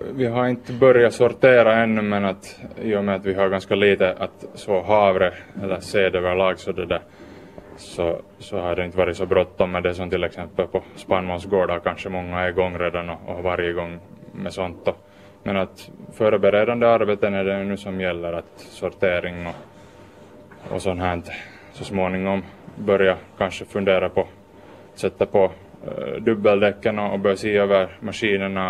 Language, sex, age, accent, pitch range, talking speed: Swedish, male, 20-39, Finnish, 90-100 Hz, 175 wpm